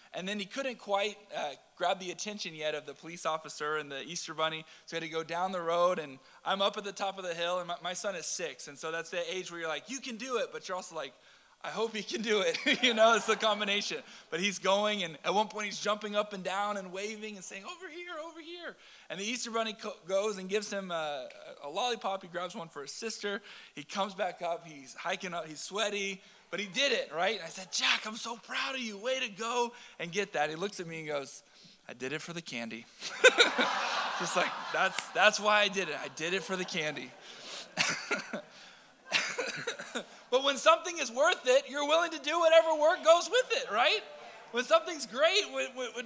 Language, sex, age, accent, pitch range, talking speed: English, male, 20-39, American, 185-255 Hz, 235 wpm